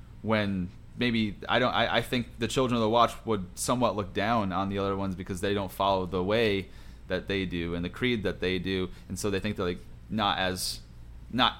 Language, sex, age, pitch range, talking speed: English, male, 30-49, 95-120 Hz, 230 wpm